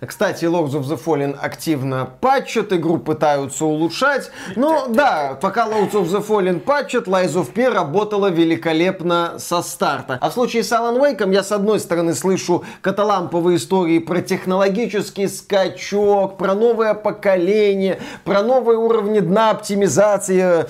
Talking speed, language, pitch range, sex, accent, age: 140 wpm, Russian, 180-240 Hz, male, native, 20-39